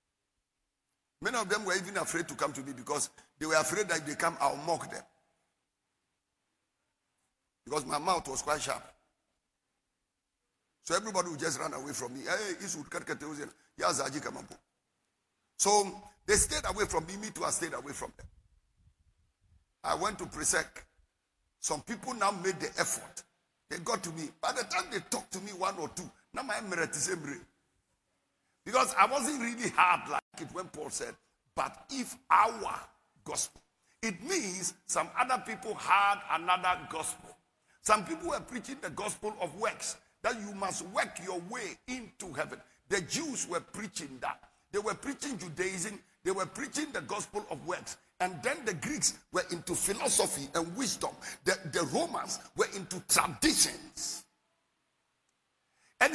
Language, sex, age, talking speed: English, male, 50-69, 155 wpm